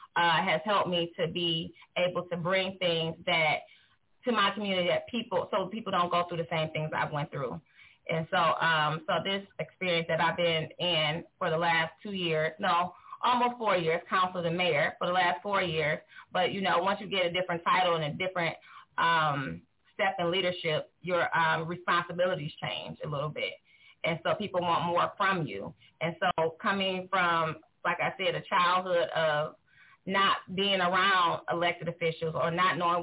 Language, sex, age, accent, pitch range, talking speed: English, female, 20-39, American, 170-195 Hz, 185 wpm